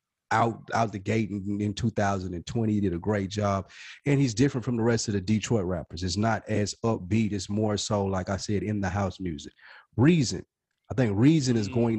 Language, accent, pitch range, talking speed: English, American, 100-125 Hz, 205 wpm